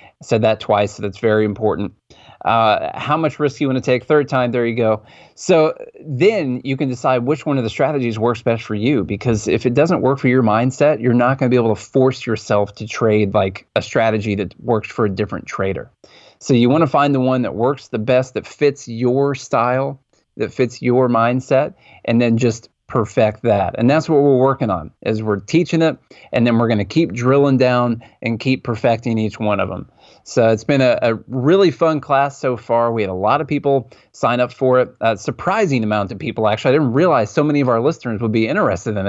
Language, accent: English, American